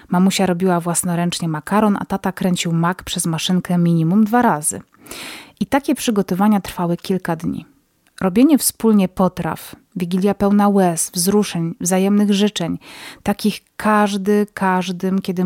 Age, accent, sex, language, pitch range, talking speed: 30-49, native, female, Polish, 180-210 Hz, 125 wpm